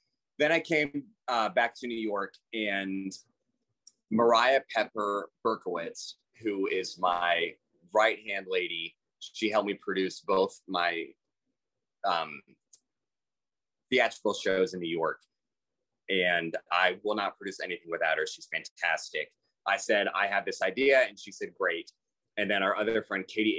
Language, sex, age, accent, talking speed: English, male, 30-49, American, 140 wpm